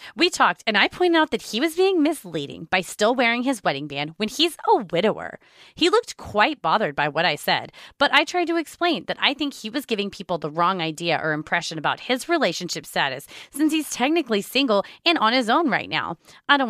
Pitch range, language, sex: 180-295 Hz, English, female